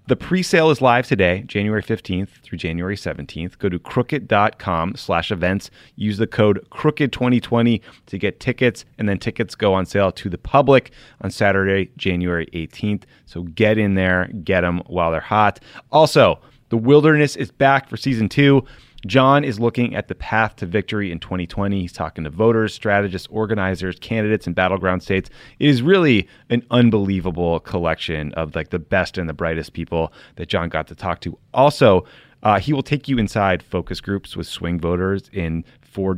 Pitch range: 85-115 Hz